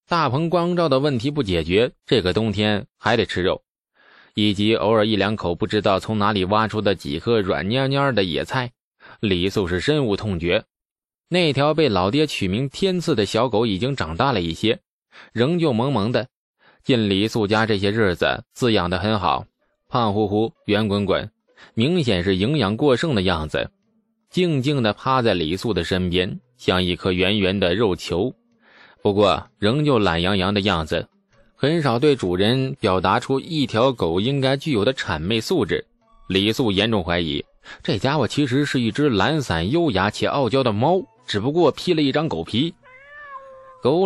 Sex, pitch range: male, 100-140 Hz